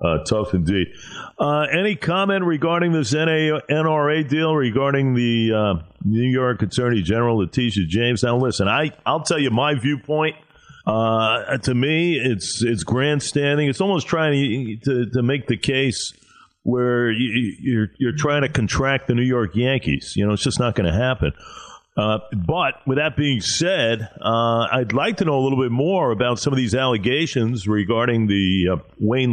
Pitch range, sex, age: 100-145 Hz, male, 50-69